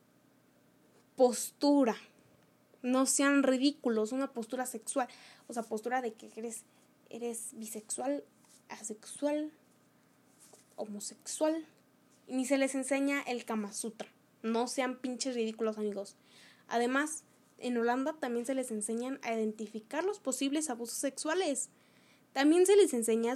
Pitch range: 230-280 Hz